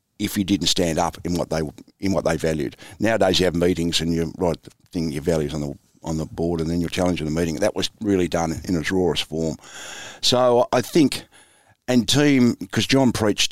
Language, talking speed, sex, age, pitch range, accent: English, 220 wpm, male, 50-69, 85-100 Hz, Australian